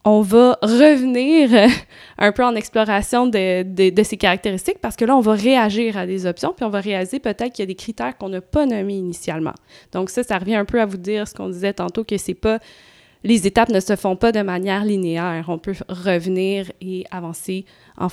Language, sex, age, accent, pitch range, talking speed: French, female, 20-39, Canadian, 185-230 Hz, 220 wpm